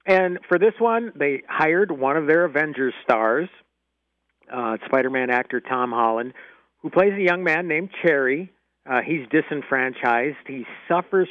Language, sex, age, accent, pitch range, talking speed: English, male, 50-69, American, 120-160 Hz, 150 wpm